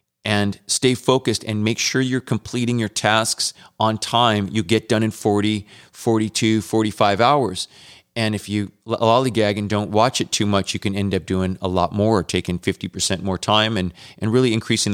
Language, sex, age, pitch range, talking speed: English, male, 30-49, 100-115 Hz, 185 wpm